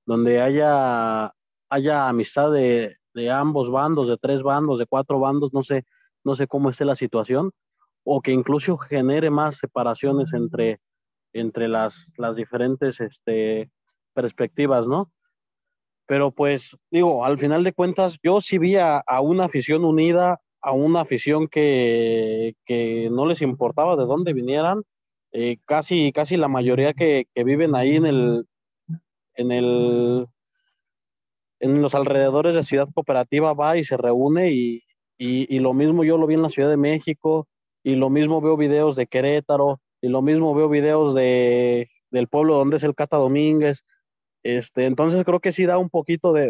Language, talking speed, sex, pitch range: Spanish, 160 wpm, male, 125-155 Hz